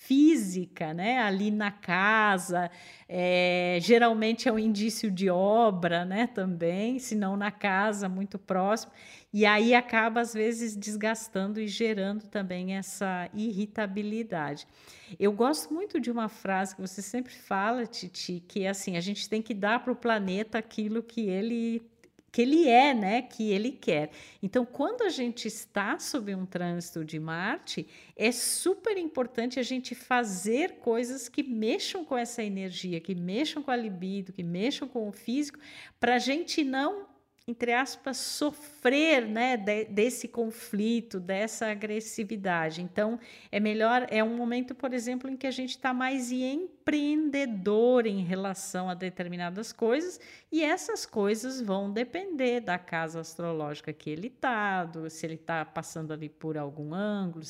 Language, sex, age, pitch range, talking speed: Portuguese, female, 50-69, 190-245 Hz, 150 wpm